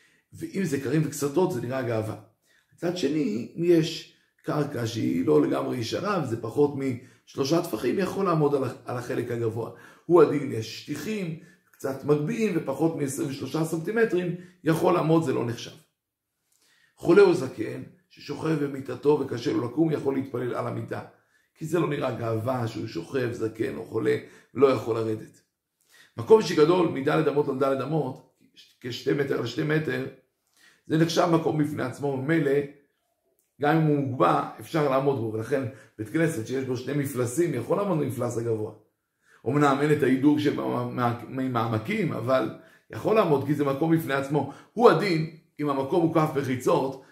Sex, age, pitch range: male, 50-69, 125-165 Hz